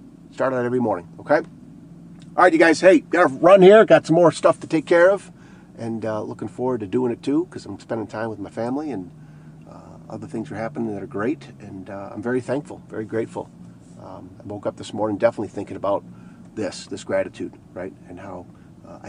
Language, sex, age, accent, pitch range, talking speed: English, male, 40-59, American, 105-125 Hz, 215 wpm